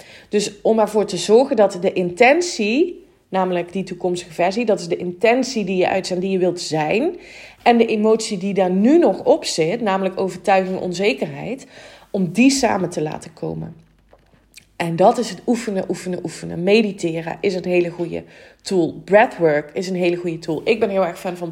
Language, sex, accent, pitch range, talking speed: Dutch, female, Dutch, 180-225 Hz, 190 wpm